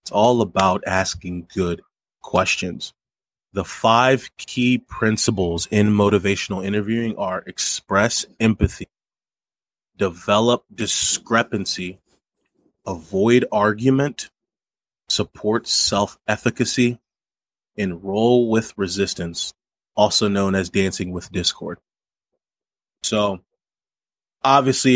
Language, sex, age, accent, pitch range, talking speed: English, male, 20-39, American, 95-120 Hz, 80 wpm